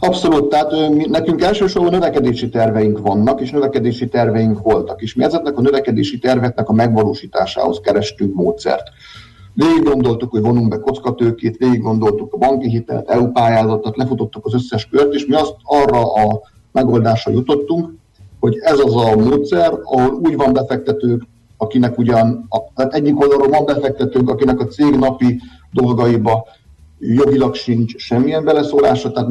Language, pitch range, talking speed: Hungarian, 110-135 Hz, 150 wpm